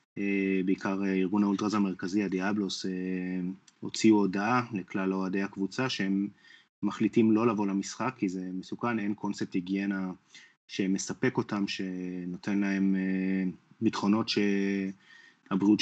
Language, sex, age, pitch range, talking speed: Hebrew, male, 30-49, 95-105 Hz, 115 wpm